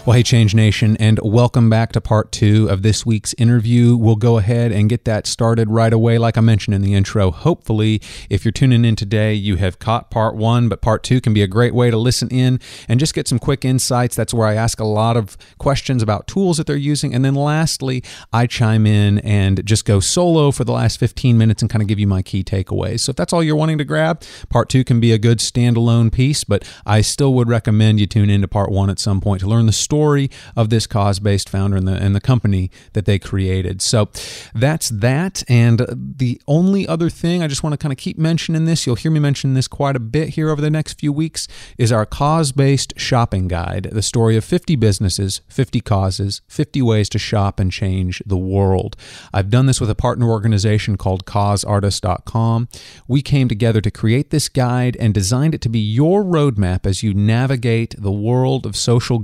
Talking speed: 225 wpm